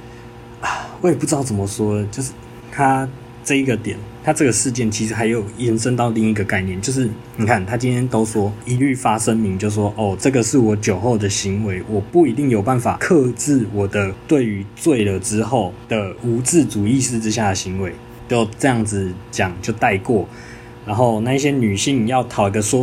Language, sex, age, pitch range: Chinese, male, 20-39, 105-125 Hz